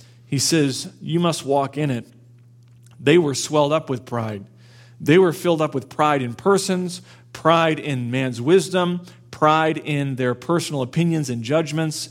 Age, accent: 40-59, American